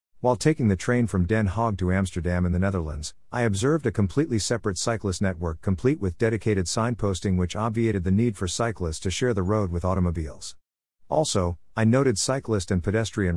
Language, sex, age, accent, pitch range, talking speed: English, male, 50-69, American, 90-115 Hz, 185 wpm